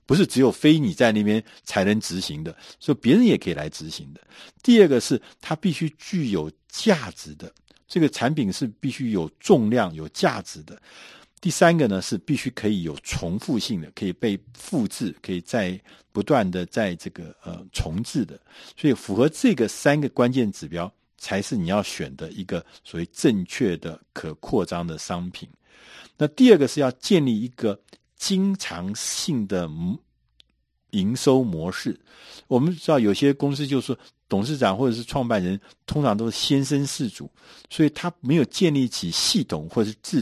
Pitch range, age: 90-150 Hz, 50-69